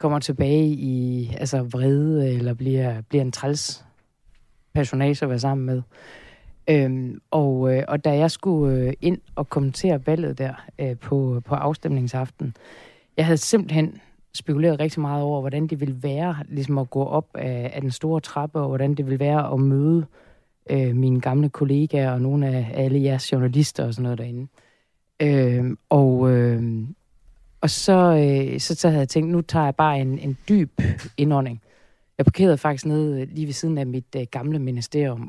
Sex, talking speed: female, 175 wpm